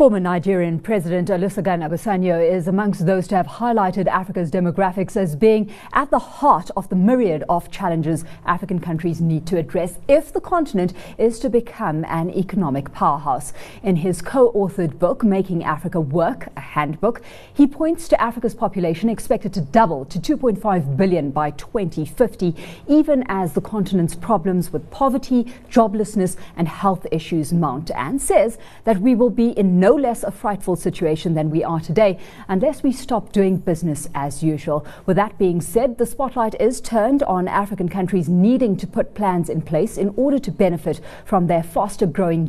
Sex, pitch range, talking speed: female, 170-220 Hz, 170 wpm